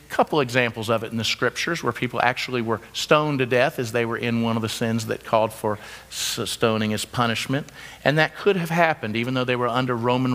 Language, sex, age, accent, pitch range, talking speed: English, male, 50-69, American, 120-160 Hz, 230 wpm